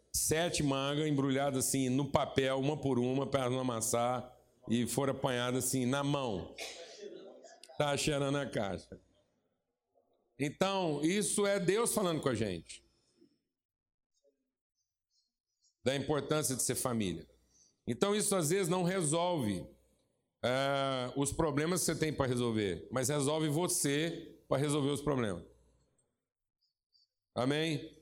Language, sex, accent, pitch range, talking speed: Portuguese, male, Brazilian, 125-160 Hz, 120 wpm